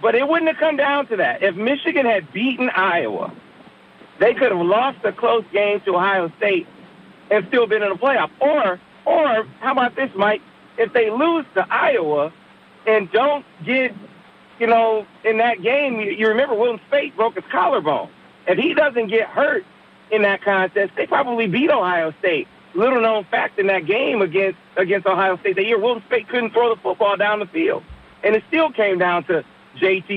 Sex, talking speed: male, 195 wpm